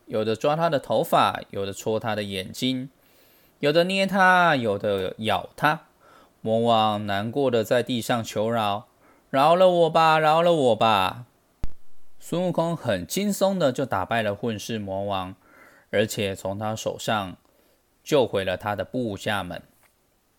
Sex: male